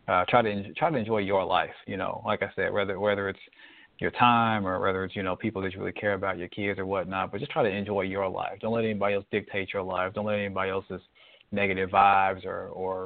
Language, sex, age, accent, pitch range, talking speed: English, male, 20-39, American, 95-105 Hz, 255 wpm